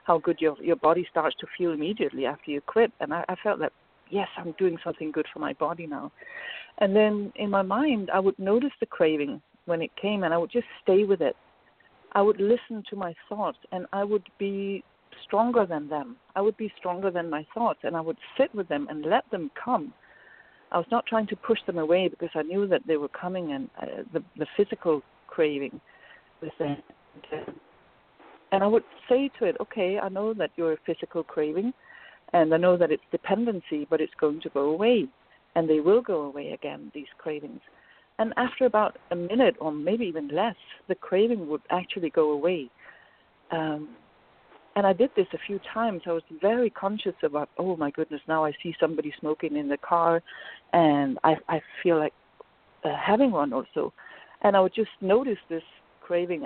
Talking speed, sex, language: 200 wpm, female, English